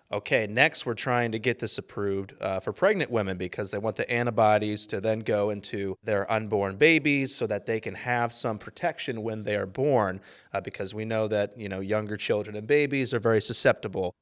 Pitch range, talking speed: 105-130 Hz, 205 wpm